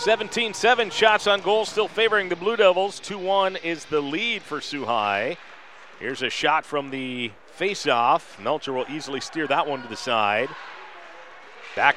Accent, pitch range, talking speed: American, 130-190 Hz, 150 wpm